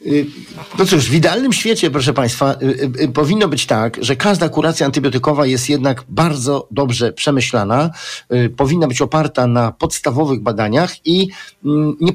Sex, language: male, Polish